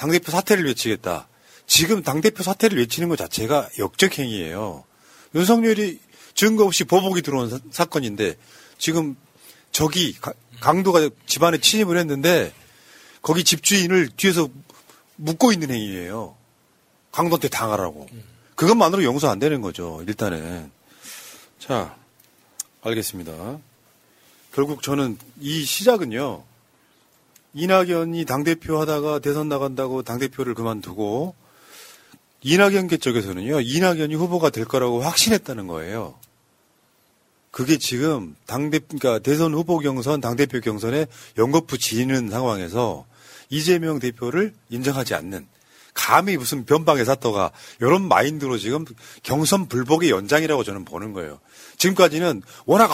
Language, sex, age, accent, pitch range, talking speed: English, male, 40-59, Korean, 120-170 Hz, 100 wpm